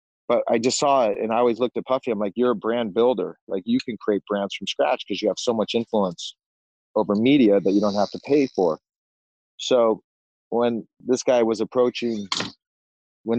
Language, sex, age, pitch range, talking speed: English, male, 40-59, 100-115 Hz, 205 wpm